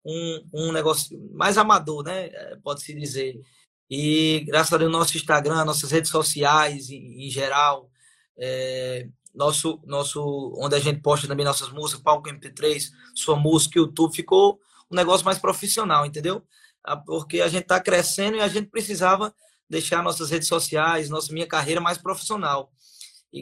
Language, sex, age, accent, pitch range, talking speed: Portuguese, male, 20-39, Brazilian, 145-170 Hz, 160 wpm